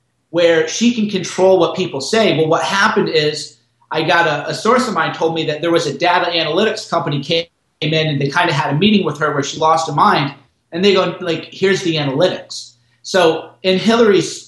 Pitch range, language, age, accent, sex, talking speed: 145-190 Hz, English, 30-49, American, male, 220 wpm